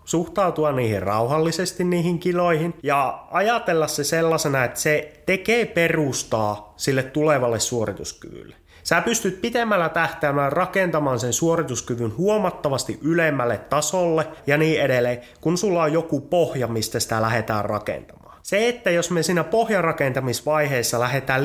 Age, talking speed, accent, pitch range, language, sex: 30-49, 125 wpm, native, 120-165 Hz, Finnish, male